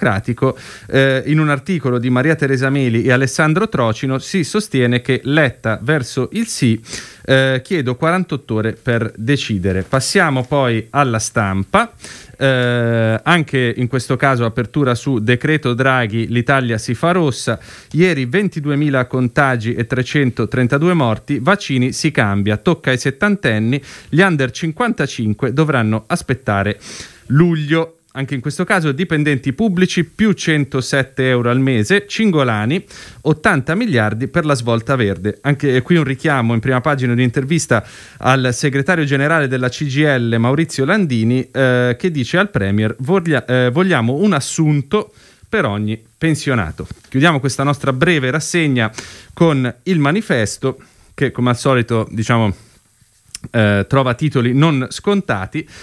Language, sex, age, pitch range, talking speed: Italian, male, 30-49, 120-155 Hz, 130 wpm